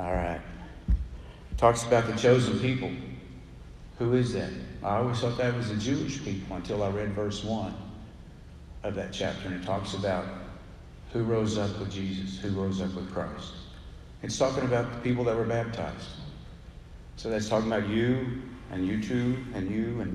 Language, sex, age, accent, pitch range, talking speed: English, male, 50-69, American, 85-115 Hz, 175 wpm